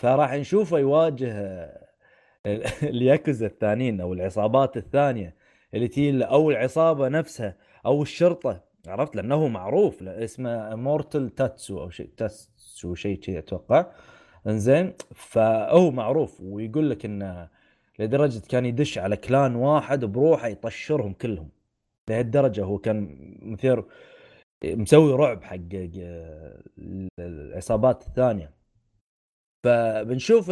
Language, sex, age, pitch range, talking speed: Arabic, male, 20-39, 100-135 Hz, 100 wpm